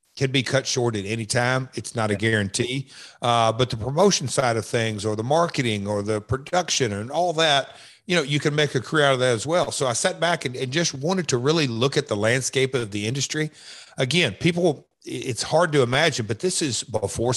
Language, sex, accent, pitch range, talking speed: English, male, American, 115-150 Hz, 230 wpm